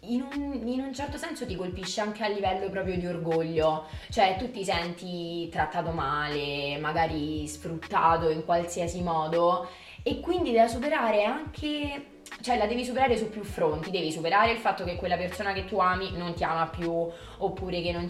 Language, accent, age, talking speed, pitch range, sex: Italian, native, 20-39, 180 wpm, 155-200 Hz, female